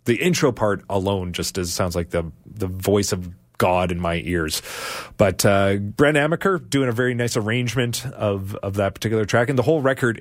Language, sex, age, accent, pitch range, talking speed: English, male, 30-49, American, 100-130 Hz, 195 wpm